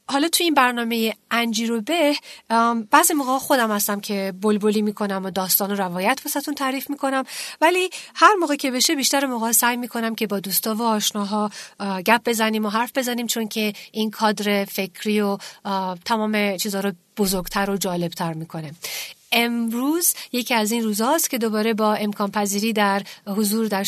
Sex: female